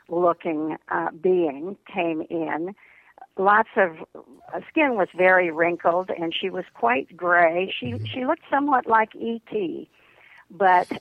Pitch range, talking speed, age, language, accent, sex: 170-205 Hz, 130 wpm, 50-69, English, American, female